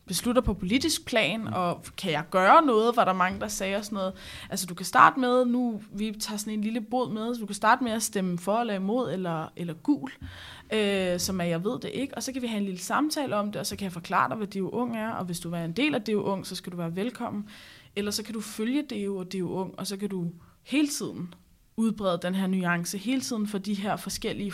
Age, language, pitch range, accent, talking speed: 20-39, Danish, 185-225 Hz, native, 265 wpm